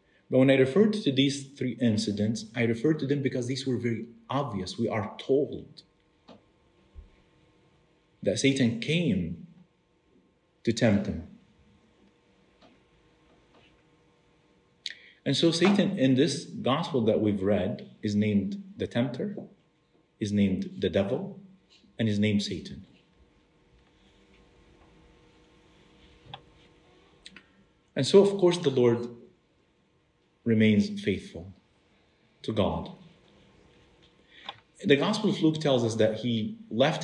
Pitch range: 110-155 Hz